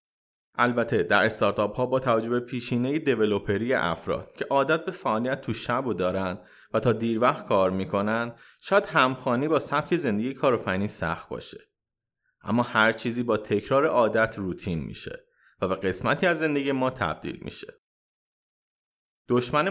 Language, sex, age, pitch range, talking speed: Persian, male, 30-49, 110-145 Hz, 150 wpm